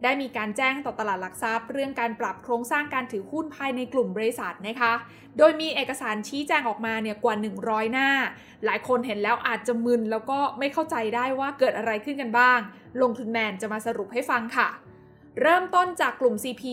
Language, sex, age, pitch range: Thai, female, 20-39, 225-280 Hz